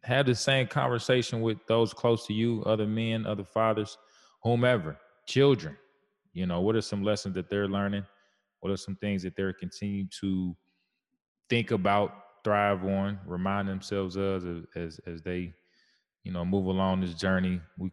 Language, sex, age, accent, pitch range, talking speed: English, male, 20-39, American, 95-110 Hz, 165 wpm